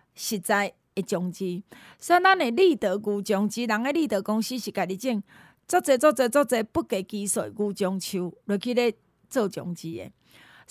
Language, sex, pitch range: Chinese, female, 195-260 Hz